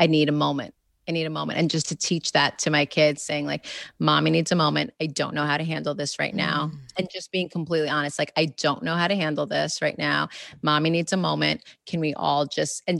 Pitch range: 155-175 Hz